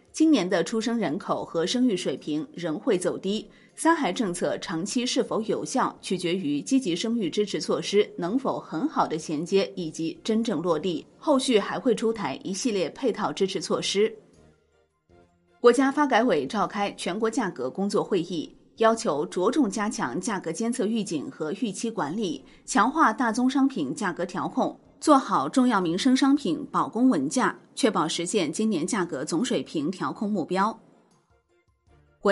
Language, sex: Chinese, female